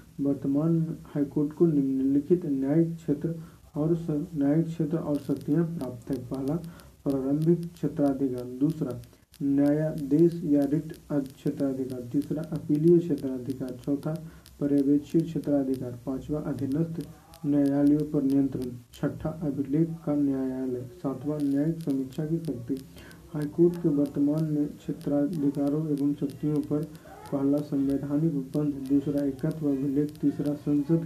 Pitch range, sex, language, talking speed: 140-155 Hz, male, Hindi, 85 wpm